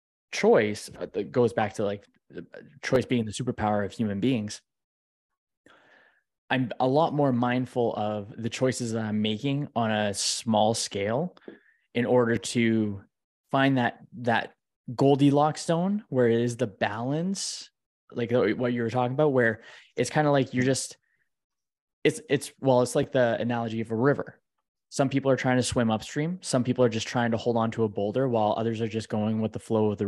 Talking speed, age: 185 wpm, 20-39